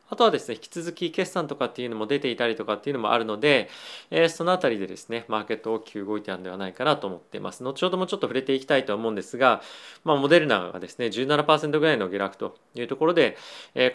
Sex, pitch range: male, 110-155 Hz